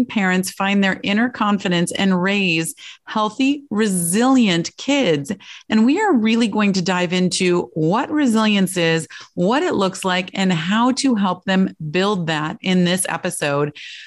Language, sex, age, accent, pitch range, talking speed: English, female, 30-49, American, 175-235 Hz, 150 wpm